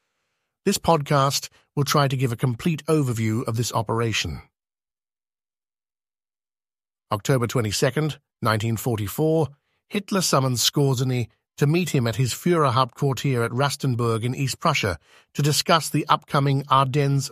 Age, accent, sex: 50-69, British, male